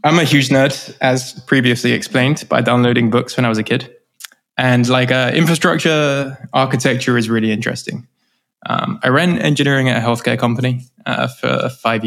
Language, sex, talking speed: English, male, 170 wpm